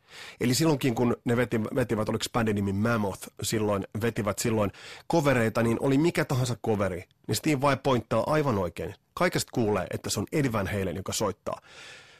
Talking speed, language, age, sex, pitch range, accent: 165 wpm, Finnish, 30-49, male, 105-140 Hz, native